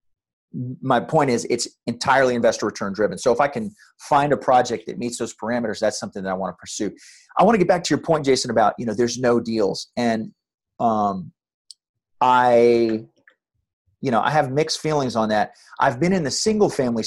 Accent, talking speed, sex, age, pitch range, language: American, 205 wpm, male, 30-49, 120-160 Hz, English